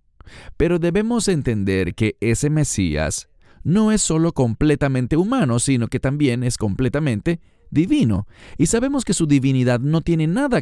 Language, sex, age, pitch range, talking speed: English, male, 40-59, 90-150 Hz, 140 wpm